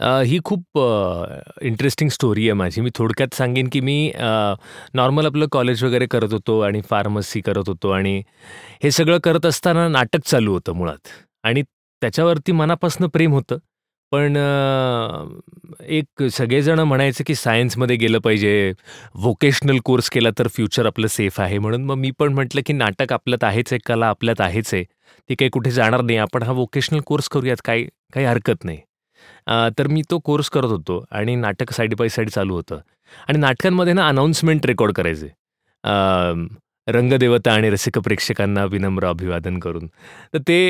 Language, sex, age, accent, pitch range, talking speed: Marathi, male, 30-49, native, 115-155 Hz, 130 wpm